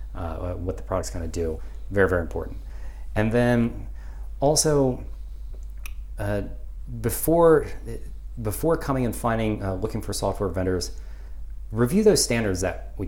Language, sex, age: English, male, 40-59